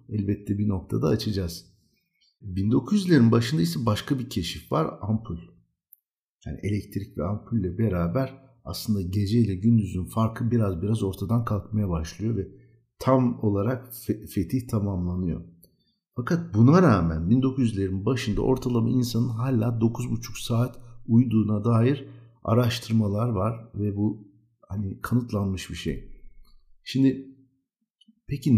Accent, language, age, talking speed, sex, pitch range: native, Turkish, 60-79, 115 wpm, male, 95-125 Hz